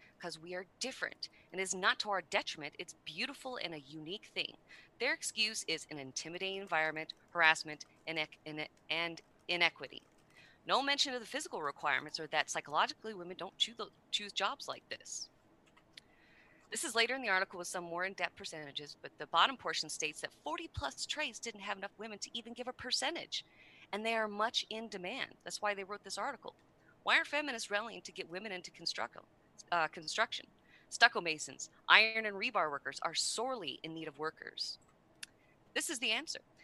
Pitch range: 160-220 Hz